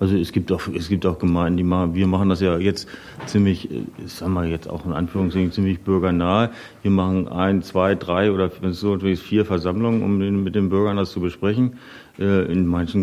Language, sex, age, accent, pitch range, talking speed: German, male, 40-59, German, 85-105 Hz, 205 wpm